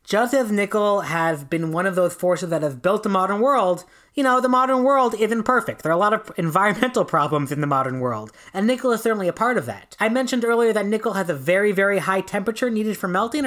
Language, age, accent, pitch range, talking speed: English, 30-49, American, 180-230 Hz, 245 wpm